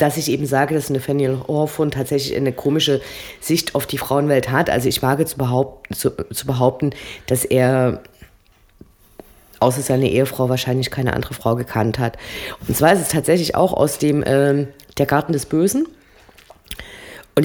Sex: female